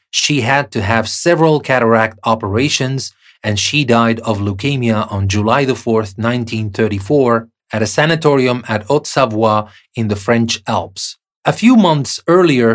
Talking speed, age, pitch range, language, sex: 140 wpm, 30-49, 110-135 Hz, English, male